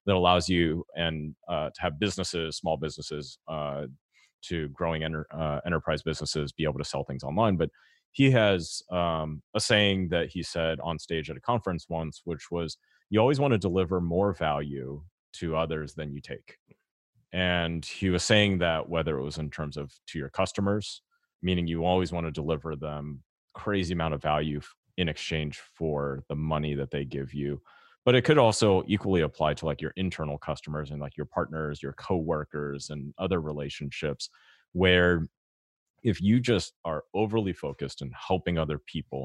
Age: 30-49